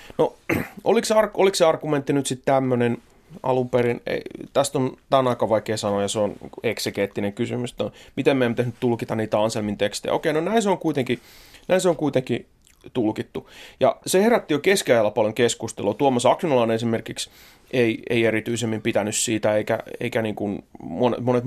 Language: Finnish